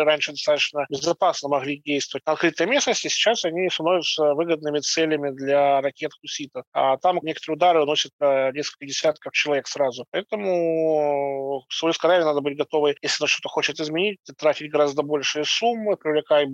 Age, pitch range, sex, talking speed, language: 20-39, 145-170 Hz, male, 145 wpm, Russian